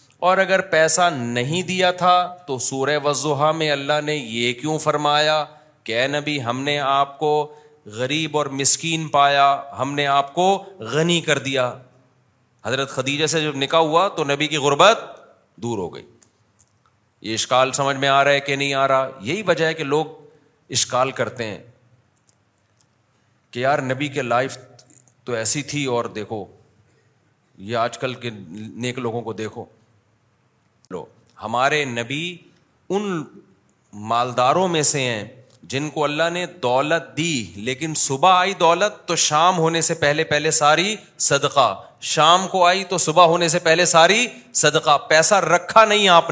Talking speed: 160 wpm